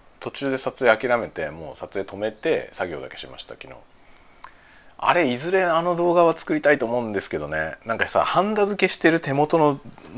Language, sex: Japanese, male